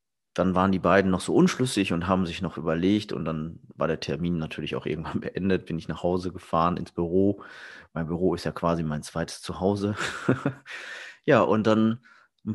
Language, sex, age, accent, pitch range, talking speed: German, male, 30-49, German, 90-105 Hz, 190 wpm